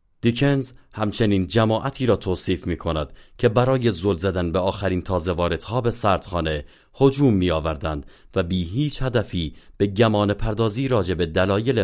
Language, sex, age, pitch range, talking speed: Persian, male, 40-59, 85-115 Hz, 140 wpm